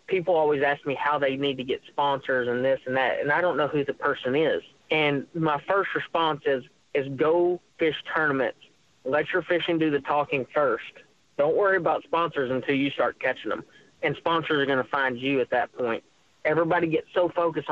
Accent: American